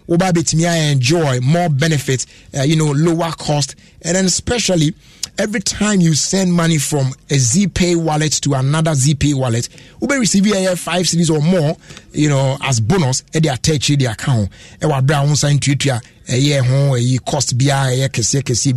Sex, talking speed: male, 175 wpm